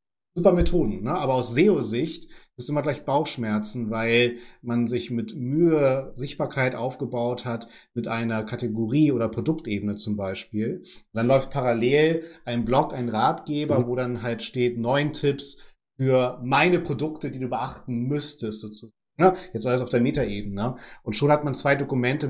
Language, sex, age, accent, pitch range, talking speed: German, male, 40-59, German, 115-145 Hz, 155 wpm